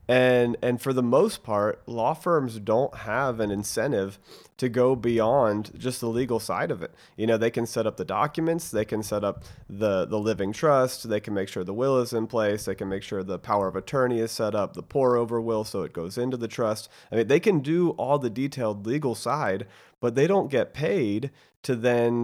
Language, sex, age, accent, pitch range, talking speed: English, male, 30-49, American, 110-135 Hz, 225 wpm